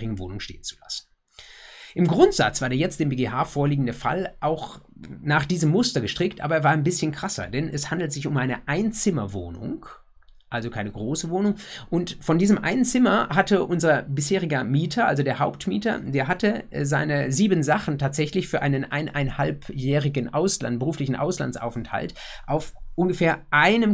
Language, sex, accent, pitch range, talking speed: German, male, German, 120-165 Hz, 155 wpm